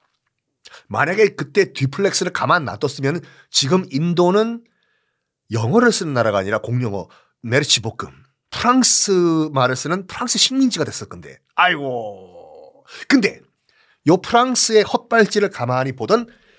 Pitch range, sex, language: 130-200 Hz, male, Korean